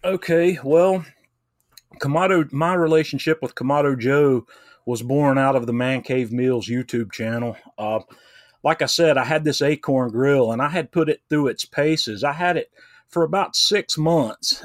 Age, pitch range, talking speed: 30-49, 120-150 Hz, 170 wpm